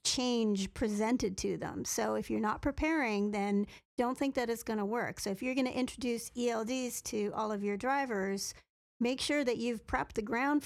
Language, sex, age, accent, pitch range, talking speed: English, female, 40-59, American, 210-250 Hz, 205 wpm